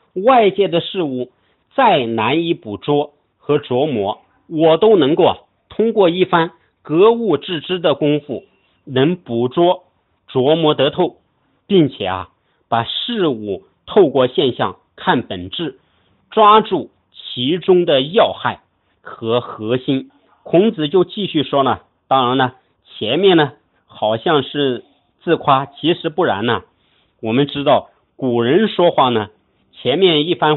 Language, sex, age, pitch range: Chinese, male, 50-69, 125-180 Hz